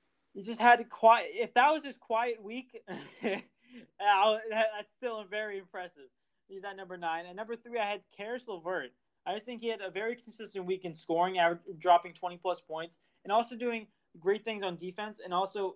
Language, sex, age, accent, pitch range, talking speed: English, male, 20-39, American, 160-210 Hz, 190 wpm